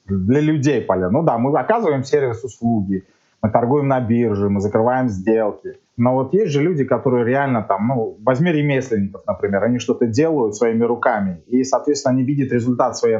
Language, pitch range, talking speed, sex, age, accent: Russian, 110-145 Hz, 175 wpm, male, 20-39, native